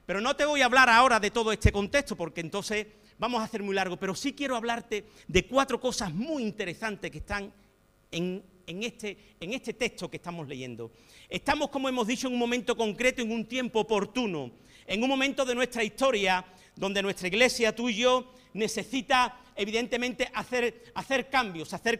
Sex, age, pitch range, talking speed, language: male, 50-69, 210-270 Hz, 180 wpm, Spanish